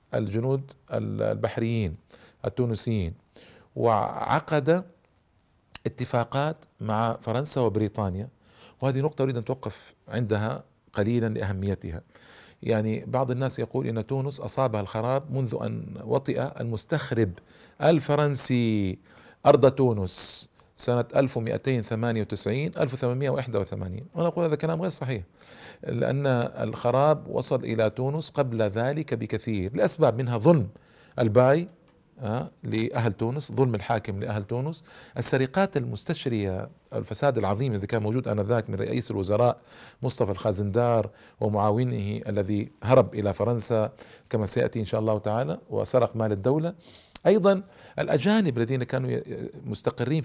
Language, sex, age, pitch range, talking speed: Arabic, male, 50-69, 110-135 Hz, 105 wpm